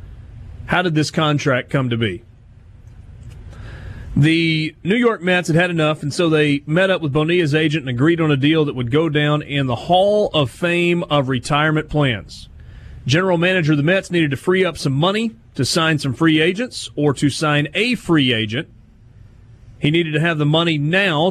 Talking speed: 190 wpm